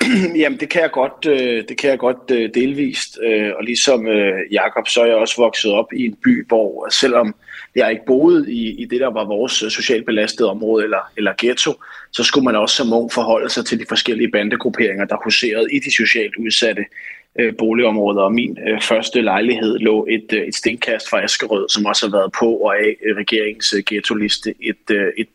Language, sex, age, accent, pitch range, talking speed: Danish, male, 30-49, native, 110-160 Hz, 185 wpm